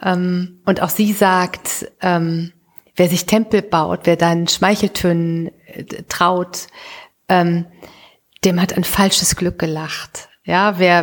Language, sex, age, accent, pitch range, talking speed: German, female, 40-59, German, 170-195 Hz, 110 wpm